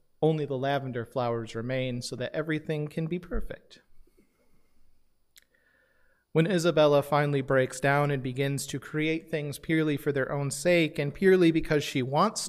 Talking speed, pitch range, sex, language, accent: 150 wpm, 130-160 Hz, male, English, American